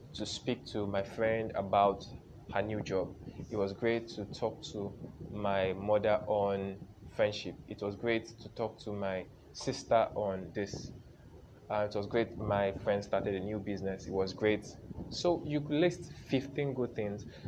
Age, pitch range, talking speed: 20-39, 105-130 Hz, 165 wpm